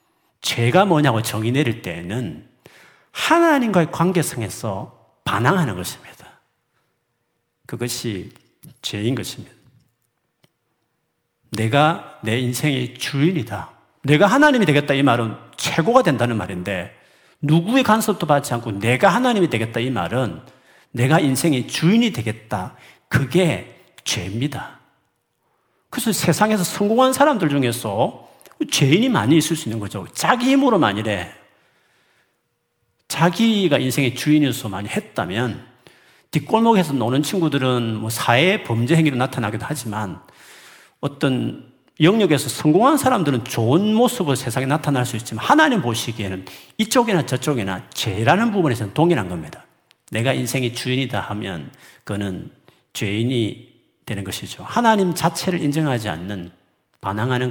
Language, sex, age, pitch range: Korean, male, 40-59, 115-170 Hz